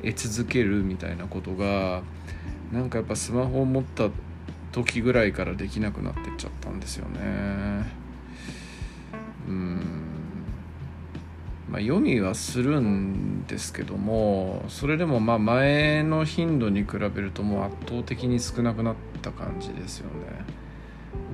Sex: male